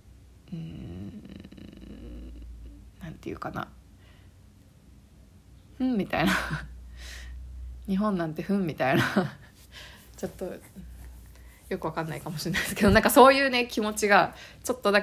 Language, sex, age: Japanese, female, 20-39